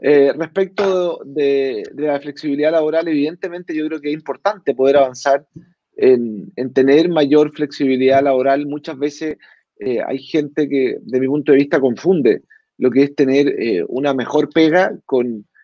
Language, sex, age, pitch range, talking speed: Spanish, male, 30-49, 140-185 Hz, 160 wpm